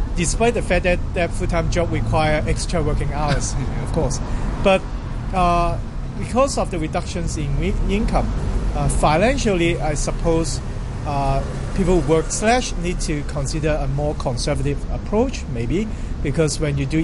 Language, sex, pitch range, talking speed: English, male, 125-170 Hz, 150 wpm